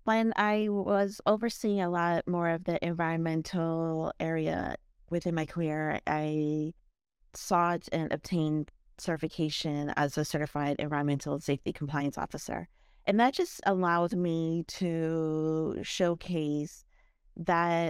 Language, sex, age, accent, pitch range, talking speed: English, female, 30-49, American, 155-175 Hz, 115 wpm